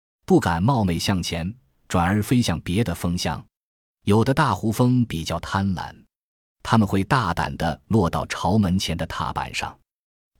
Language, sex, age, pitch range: Chinese, male, 20-39, 85-110 Hz